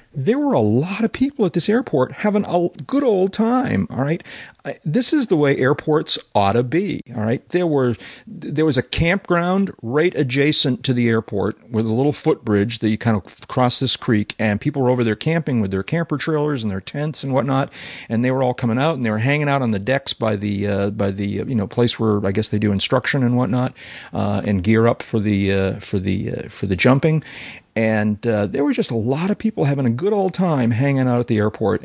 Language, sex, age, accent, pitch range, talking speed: English, male, 40-59, American, 105-140 Hz, 235 wpm